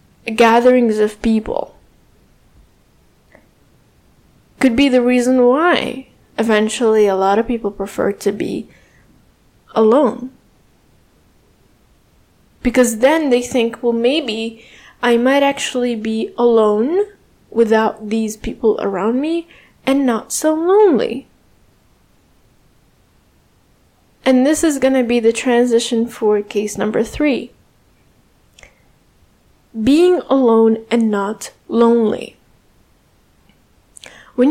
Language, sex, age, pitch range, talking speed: English, female, 10-29, 220-265 Hz, 95 wpm